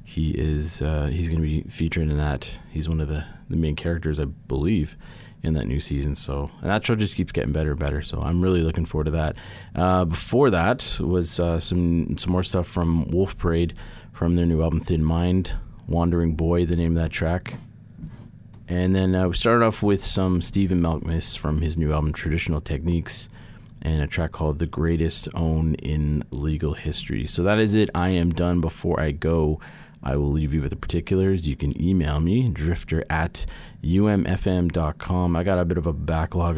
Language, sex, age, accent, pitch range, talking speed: English, male, 30-49, American, 80-95 Hz, 200 wpm